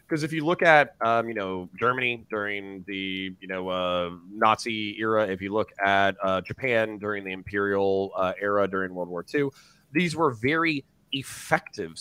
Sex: male